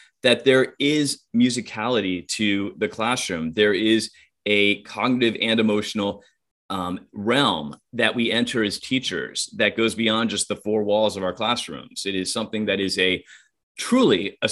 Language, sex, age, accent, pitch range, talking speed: English, male, 30-49, American, 100-120 Hz, 155 wpm